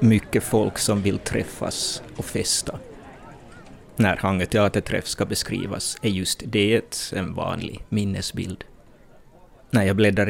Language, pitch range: Swedish, 95-110 Hz